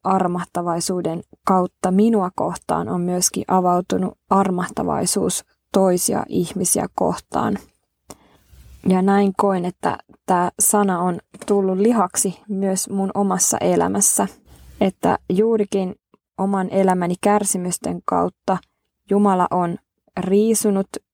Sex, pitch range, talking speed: female, 180-205 Hz, 95 wpm